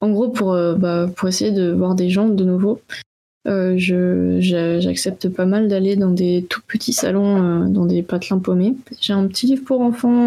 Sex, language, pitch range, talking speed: female, French, 180-210 Hz, 210 wpm